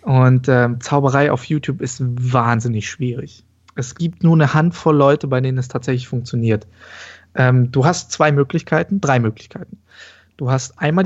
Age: 20-39